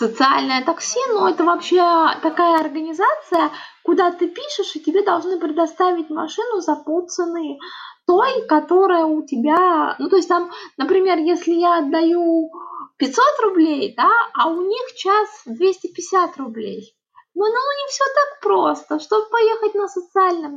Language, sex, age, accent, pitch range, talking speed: Russian, female, 20-39, native, 315-380 Hz, 140 wpm